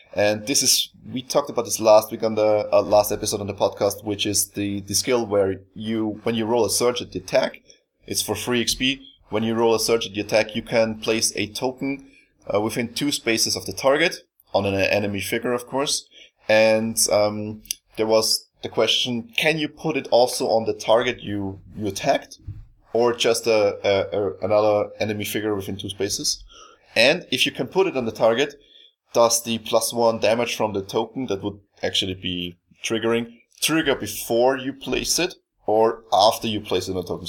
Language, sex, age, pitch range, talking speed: English, male, 20-39, 105-125 Hz, 200 wpm